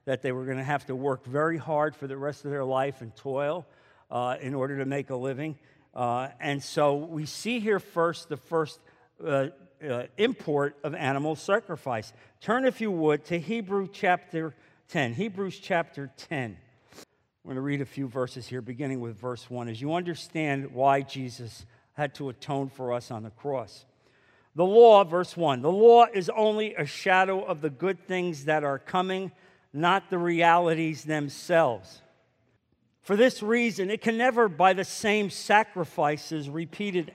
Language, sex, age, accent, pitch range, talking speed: English, male, 50-69, American, 135-190 Hz, 175 wpm